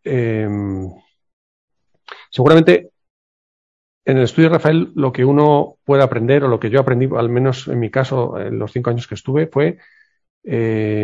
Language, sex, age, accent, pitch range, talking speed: Spanish, male, 40-59, Spanish, 115-135 Hz, 165 wpm